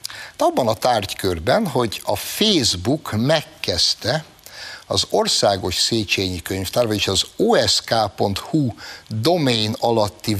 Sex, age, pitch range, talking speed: male, 60-79, 100-135 Hz, 90 wpm